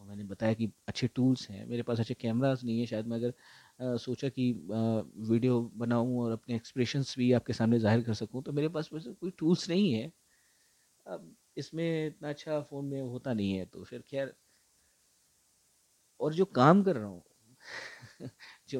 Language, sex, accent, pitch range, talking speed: Hindi, male, native, 115-155 Hz, 180 wpm